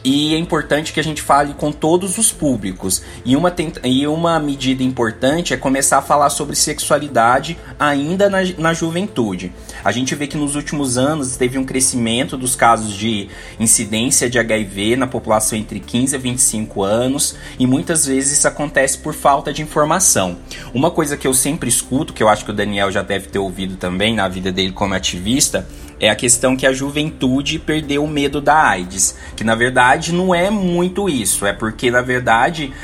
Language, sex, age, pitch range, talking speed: Portuguese, male, 20-39, 105-145 Hz, 185 wpm